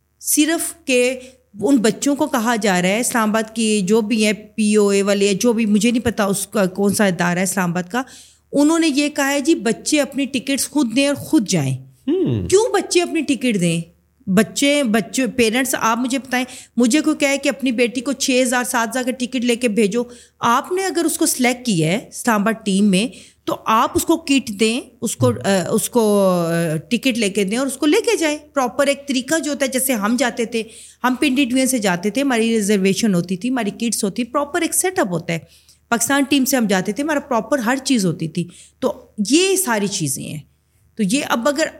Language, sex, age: Urdu, female, 30-49